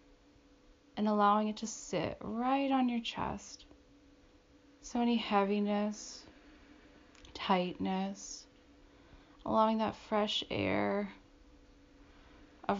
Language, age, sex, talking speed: English, 30-49, female, 85 wpm